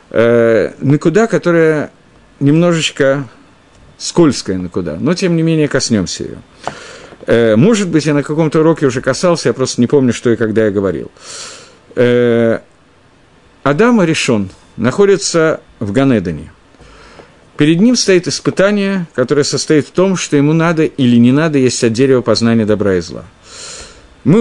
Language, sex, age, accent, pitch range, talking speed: Russian, male, 50-69, native, 115-165 Hz, 145 wpm